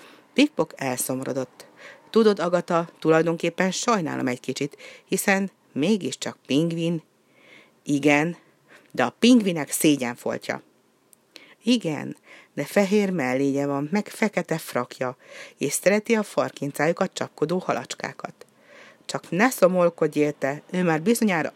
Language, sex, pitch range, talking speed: Hungarian, female, 145-195 Hz, 105 wpm